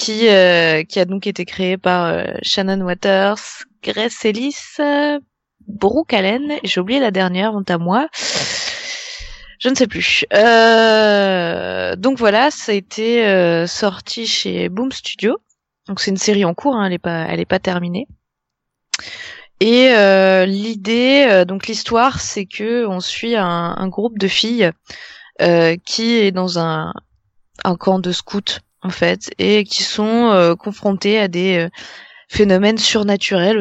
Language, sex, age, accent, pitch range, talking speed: French, female, 20-39, French, 180-225 Hz, 155 wpm